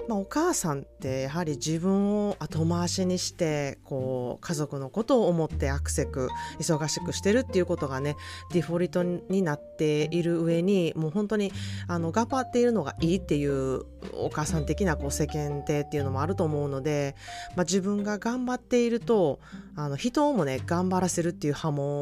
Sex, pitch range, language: female, 140-195 Hz, Japanese